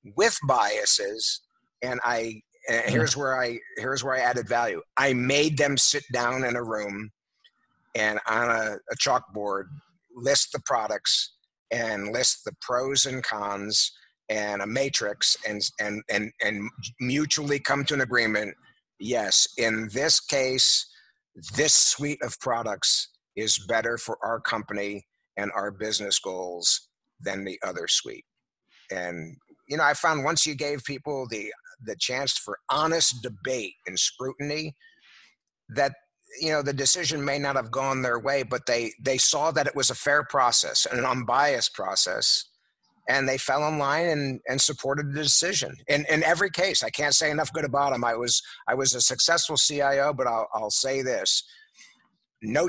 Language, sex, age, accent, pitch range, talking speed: English, male, 50-69, American, 115-145 Hz, 165 wpm